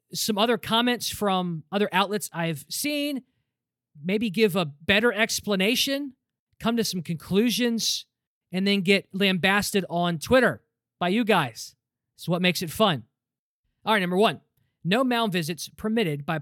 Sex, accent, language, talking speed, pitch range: male, American, English, 145 wpm, 165-225 Hz